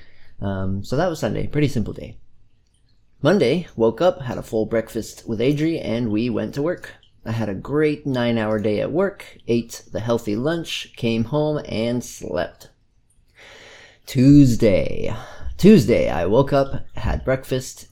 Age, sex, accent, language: 30-49, male, American, English